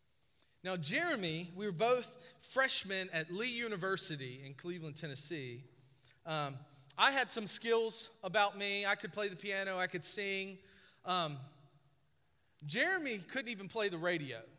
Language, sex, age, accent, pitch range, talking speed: English, male, 30-49, American, 155-250 Hz, 140 wpm